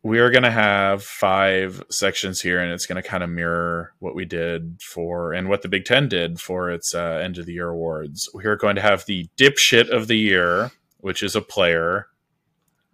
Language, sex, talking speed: English, male, 220 wpm